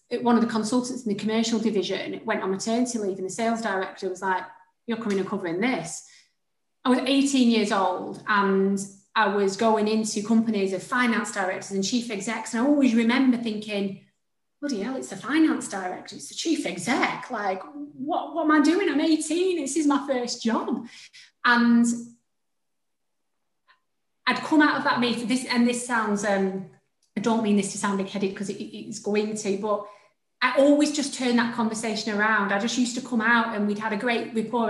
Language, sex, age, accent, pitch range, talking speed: English, female, 30-49, British, 205-245 Hz, 195 wpm